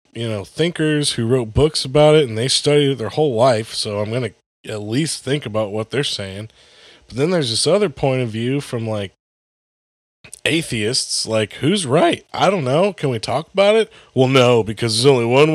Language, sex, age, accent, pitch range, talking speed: English, male, 20-39, American, 110-145 Hz, 210 wpm